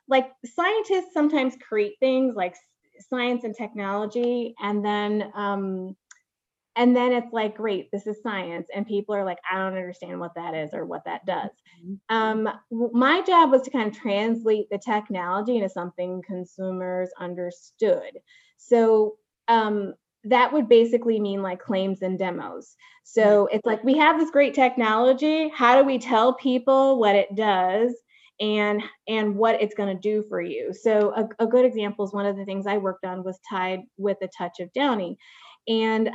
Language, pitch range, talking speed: English, 190-240 Hz, 170 wpm